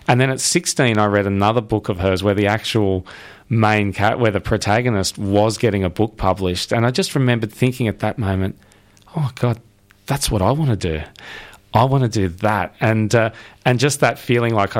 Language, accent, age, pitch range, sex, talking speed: English, Australian, 30-49, 100-115 Hz, male, 205 wpm